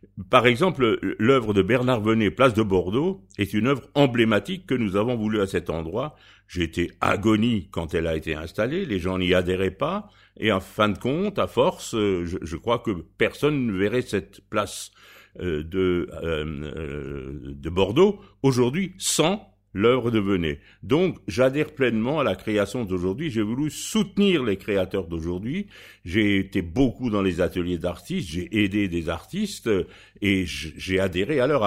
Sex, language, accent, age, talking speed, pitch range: male, French, French, 60-79, 155 wpm, 90-125 Hz